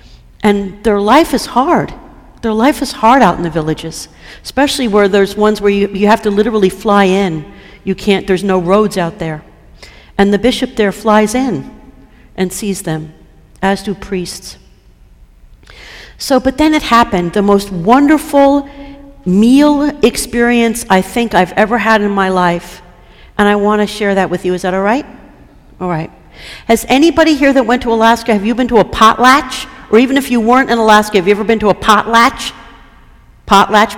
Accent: American